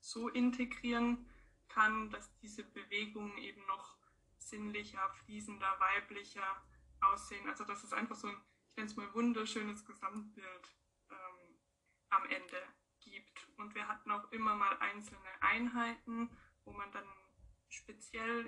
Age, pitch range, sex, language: 20-39, 200-230 Hz, female, German